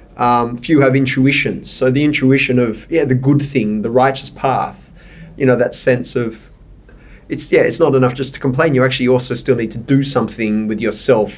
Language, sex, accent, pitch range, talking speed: English, male, Australian, 110-130 Hz, 200 wpm